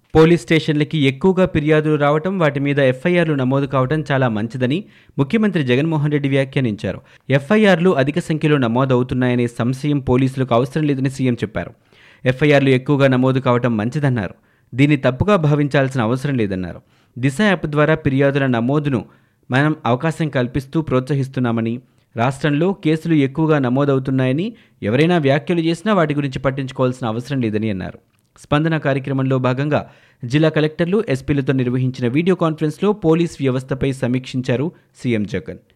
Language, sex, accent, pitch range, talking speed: Telugu, male, native, 125-155 Hz, 120 wpm